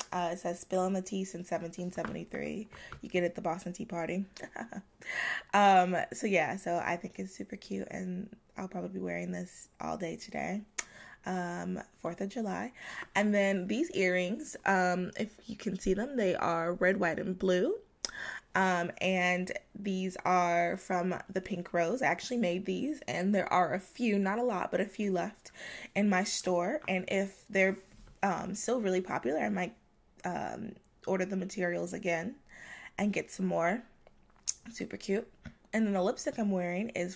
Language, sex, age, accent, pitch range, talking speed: English, female, 20-39, American, 175-200 Hz, 175 wpm